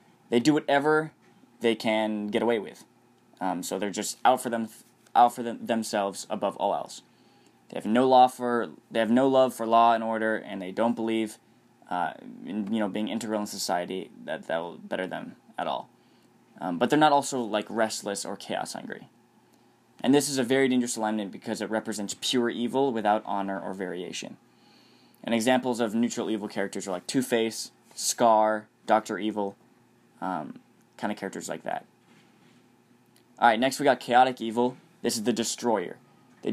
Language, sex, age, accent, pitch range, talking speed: English, male, 10-29, American, 105-125 Hz, 180 wpm